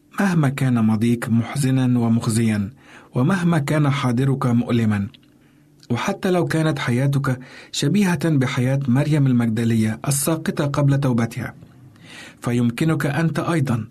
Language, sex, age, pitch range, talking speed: Arabic, male, 50-69, 120-150 Hz, 100 wpm